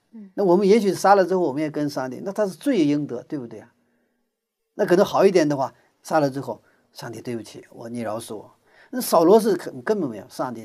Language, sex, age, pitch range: Chinese, male, 50-69, 150-230 Hz